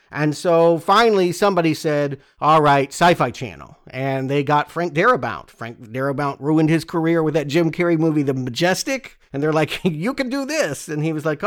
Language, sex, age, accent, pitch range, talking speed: English, male, 40-59, American, 135-170 Hz, 195 wpm